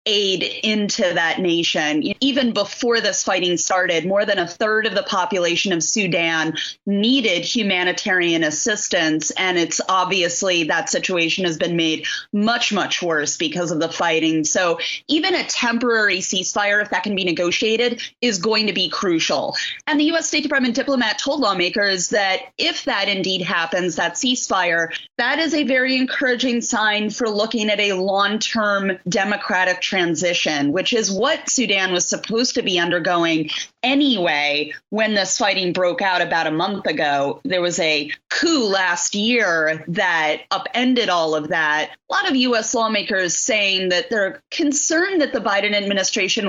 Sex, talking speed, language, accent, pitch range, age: female, 155 wpm, English, American, 175-235 Hz, 30-49